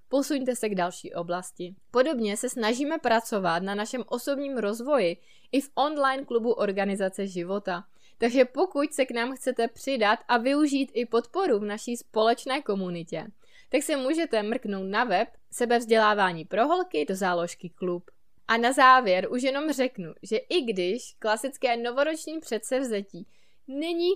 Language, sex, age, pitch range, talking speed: Czech, female, 20-39, 200-275 Hz, 145 wpm